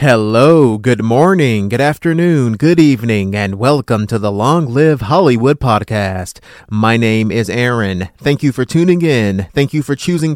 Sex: male